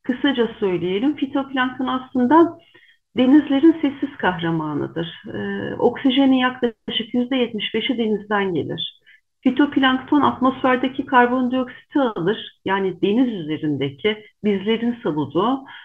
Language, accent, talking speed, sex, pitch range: Turkish, native, 85 wpm, female, 195-260 Hz